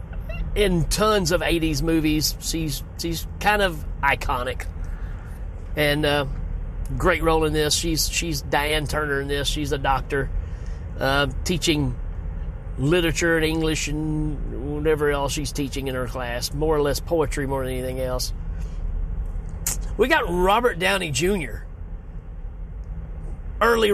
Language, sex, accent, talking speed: English, male, American, 130 wpm